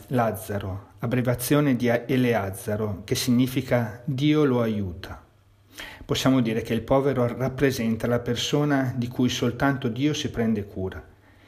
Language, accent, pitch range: Italian, native, 105-130 Hz